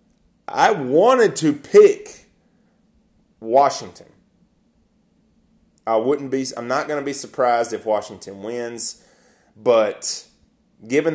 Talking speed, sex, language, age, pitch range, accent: 95 wpm, male, English, 30-49, 110-135 Hz, American